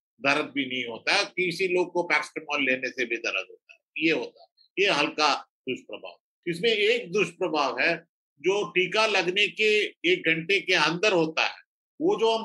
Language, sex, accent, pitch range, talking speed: Hindi, male, native, 155-200 Hz, 185 wpm